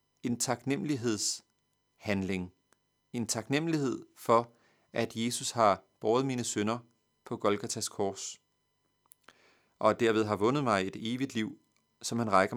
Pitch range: 110-140 Hz